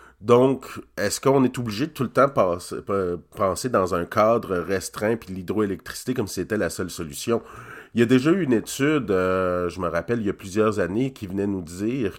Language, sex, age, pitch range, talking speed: French, male, 40-59, 95-125 Hz, 205 wpm